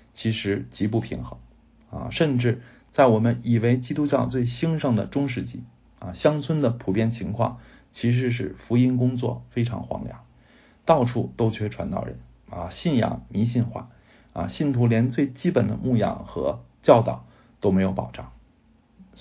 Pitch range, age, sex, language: 100-125 Hz, 50-69, male, Chinese